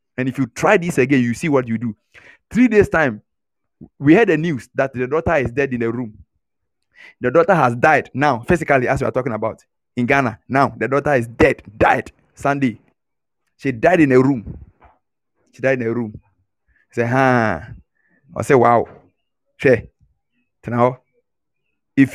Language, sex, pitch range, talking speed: English, male, 115-150 Hz, 170 wpm